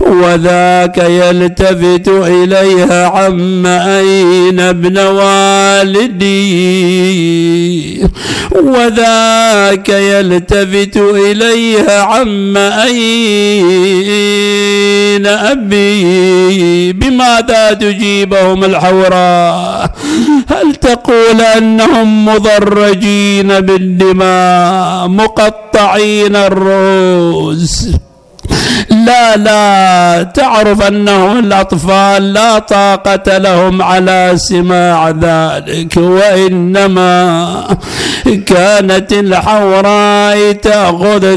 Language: Arabic